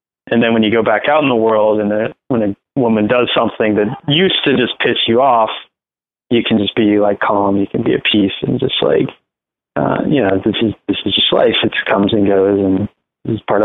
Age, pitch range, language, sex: 20-39, 105-120 Hz, English, male